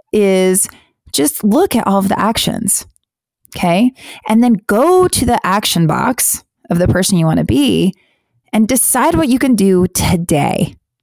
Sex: female